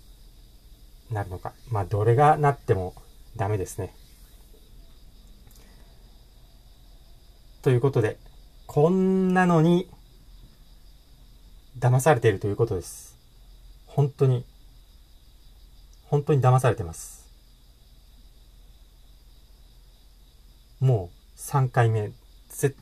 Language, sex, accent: Japanese, male, native